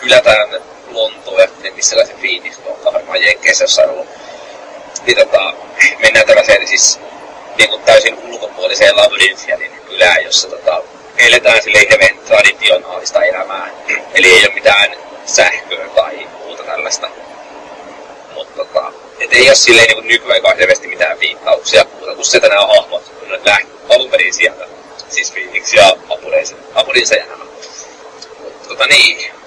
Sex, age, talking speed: male, 30-49, 130 wpm